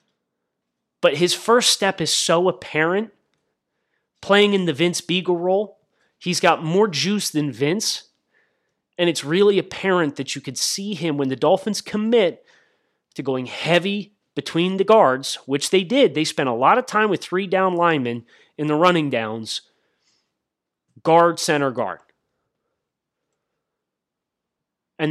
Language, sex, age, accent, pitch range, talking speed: English, male, 30-49, American, 140-185 Hz, 140 wpm